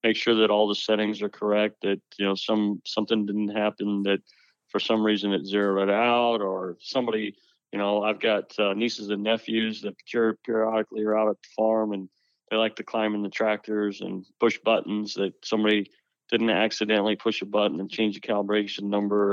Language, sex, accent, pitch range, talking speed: English, male, American, 100-115 Hz, 195 wpm